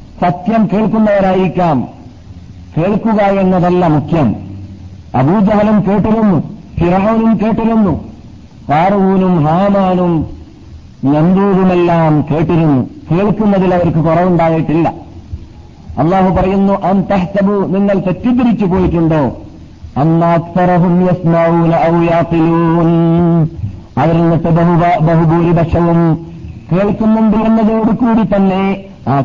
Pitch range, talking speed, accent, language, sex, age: 165-195 Hz, 60 wpm, native, Malayalam, male, 50-69